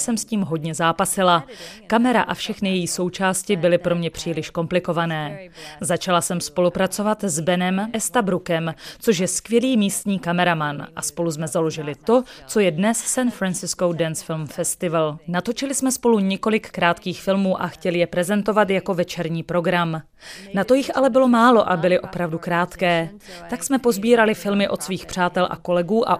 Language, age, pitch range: Czech, 30-49, 170-210 Hz